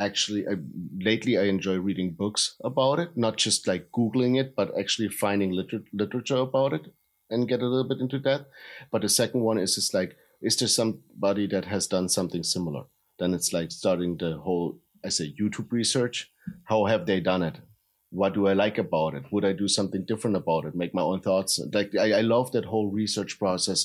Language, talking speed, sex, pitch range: English, 210 wpm, male, 90-110 Hz